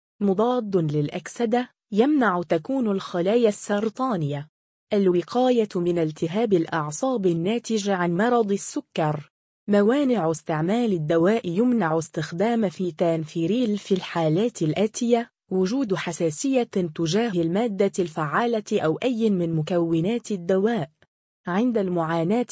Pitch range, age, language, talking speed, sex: 170-230 Hz, 20-39, Arabic, 95 wpm, female